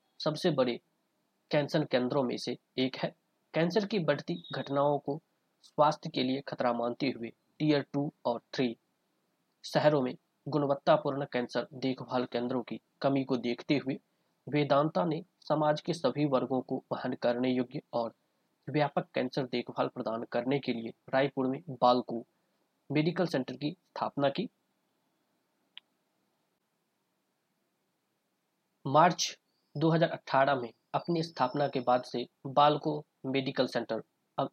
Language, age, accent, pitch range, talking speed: Hindi, 20-39, native, 125-150 Hz, 120 wpm